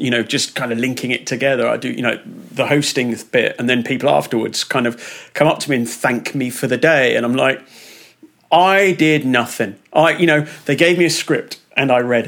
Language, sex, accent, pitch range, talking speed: English, male, British, 120-145 Hz, 235 wpm